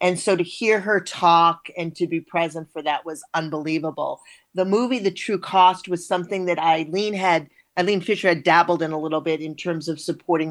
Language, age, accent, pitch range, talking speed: English, 40-59, American, 165-205 Hz, 195 wpm